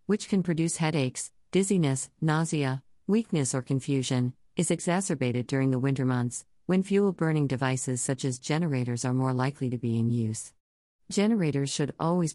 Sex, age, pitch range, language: female, 50-69, 130-165 Hz, English